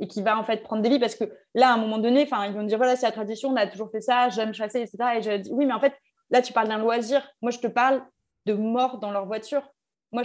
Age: 20-39